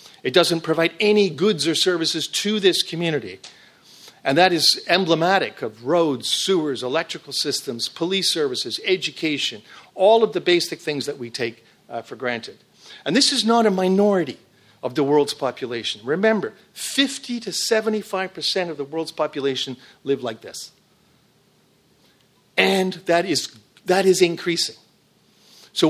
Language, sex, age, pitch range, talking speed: English, male, 50-69, 140-190 Hz, 140 wpm